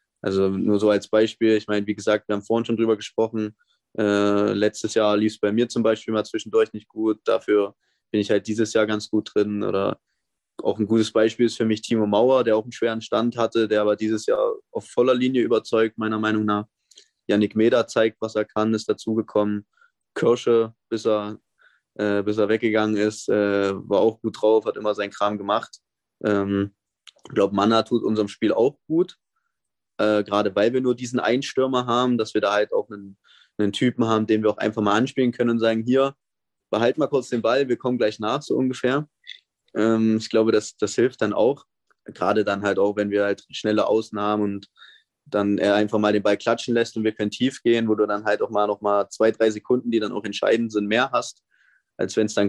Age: 20-39